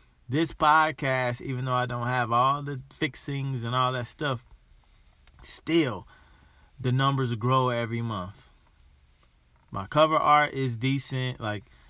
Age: 20-39